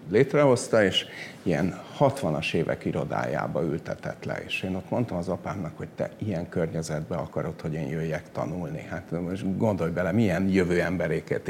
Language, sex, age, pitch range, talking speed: Hungarian, male, 60-79, 90-120 Hz, 155 wpm